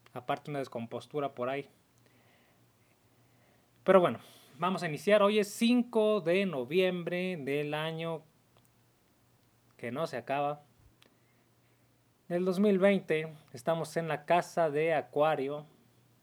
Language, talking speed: Spanish, 105 wpm